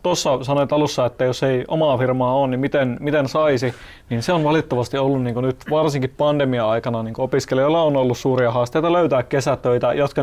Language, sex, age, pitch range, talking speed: Finnish, male, 30-49, 125-145 Hz, 195 wpm